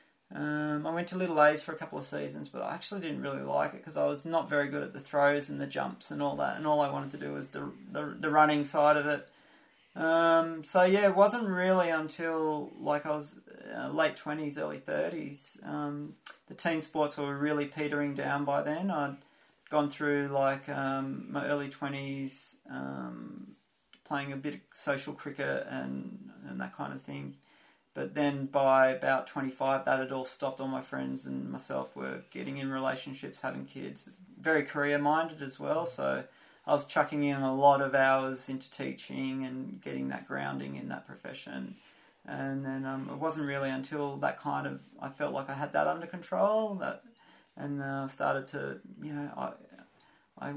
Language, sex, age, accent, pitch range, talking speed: English, male, 30-49, Australian, 130-150 Hz, 195 wpm